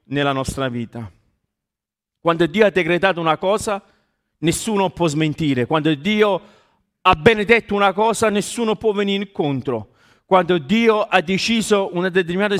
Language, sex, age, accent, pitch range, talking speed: Italian, male, 40-59, native, 135-195 Hz, 135 wpm